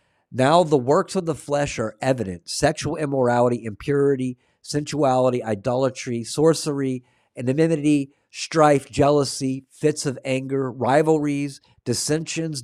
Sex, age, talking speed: male, 50-69, 105 wpm